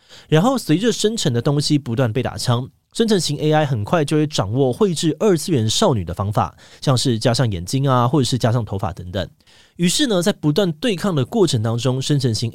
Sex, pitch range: male, 115-155 Hz